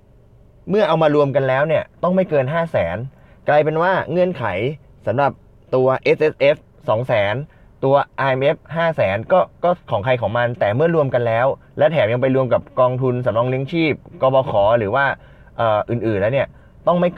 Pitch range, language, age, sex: 115-140 Hz, Thai, 20-39, male